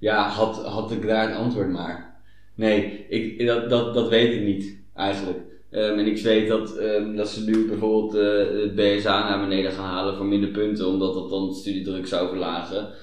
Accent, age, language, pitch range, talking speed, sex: Dutch, 20-39, Dutch, 95-105 Hz, 205 wpm, male